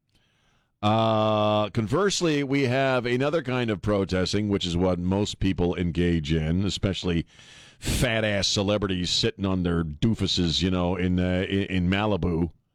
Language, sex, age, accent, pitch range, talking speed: English, male, 50-69, American, 95-120 Hz, 140 wpm